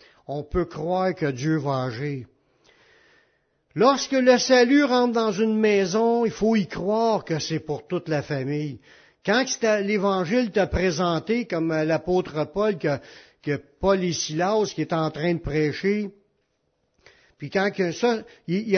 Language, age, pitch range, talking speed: French, 60-79, 155-230 Hz, 145 wpm